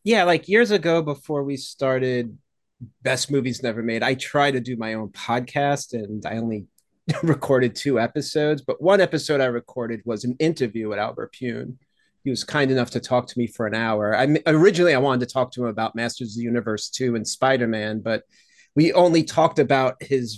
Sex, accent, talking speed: male, American, 205 wpm